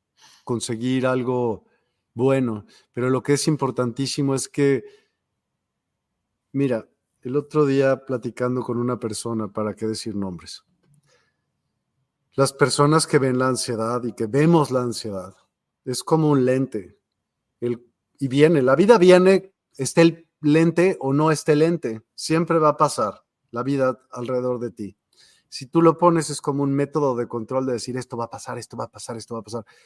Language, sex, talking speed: Spanish, male, 165 wpm